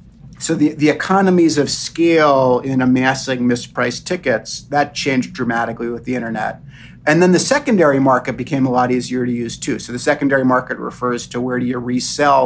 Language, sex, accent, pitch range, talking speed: English, male, American, 125-150 Hz, 185 wpm